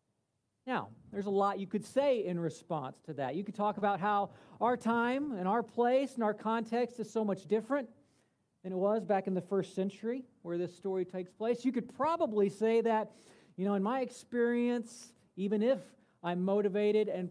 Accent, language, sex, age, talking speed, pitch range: American, English, male, 40-59, 195 wpm, 185-235 Hz